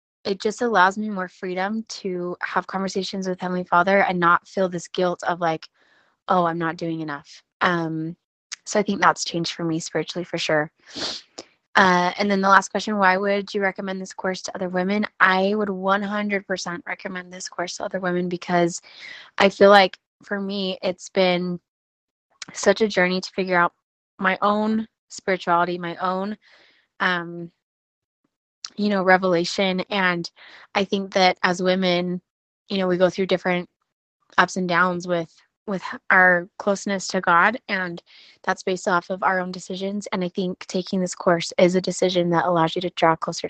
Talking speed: 170 wpm